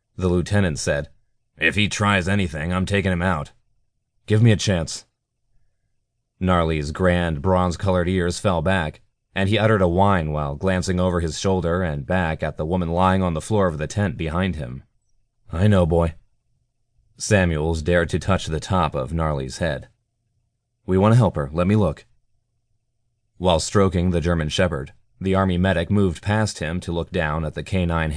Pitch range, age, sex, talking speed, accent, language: 85-100 Hz, 30-49, male, 175 wpm, American, English